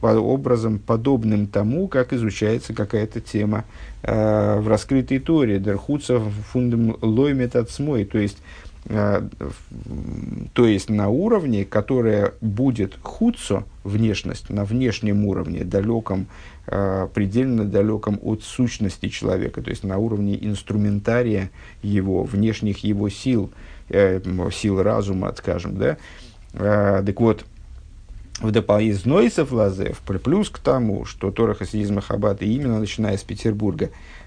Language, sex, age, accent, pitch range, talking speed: Russian, male, 50-69, native, 100-115 Hz, 110 wpm